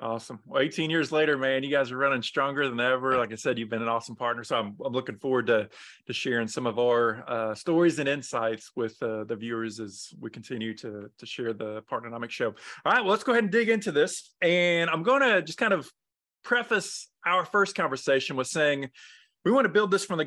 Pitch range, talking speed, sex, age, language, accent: 125-165 Hz, 235 wpm, male, 20-39, English, American